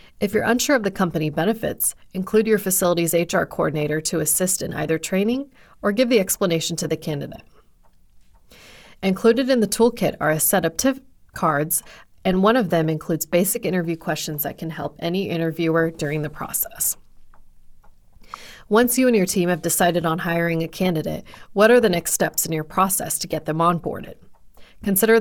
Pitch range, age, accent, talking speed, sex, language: 160-200 Hz, 30-49, American, 175 wpm, female, English